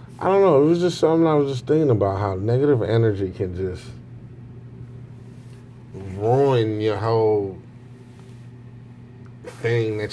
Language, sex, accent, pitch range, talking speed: English, male, American, 105-120 Hz, 130 wpm